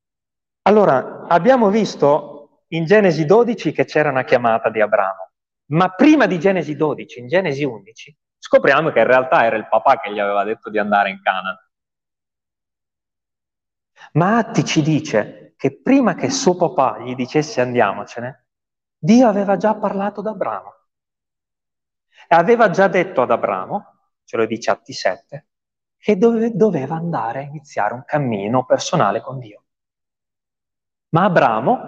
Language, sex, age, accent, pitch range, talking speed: Italian, male, 30-49, native, 150-230 Hz, 145 wpm